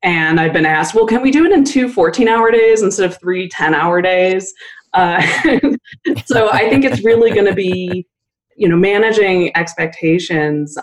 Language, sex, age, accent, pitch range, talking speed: English, female, 20-39, American, 155-205 Hz, 170 wpm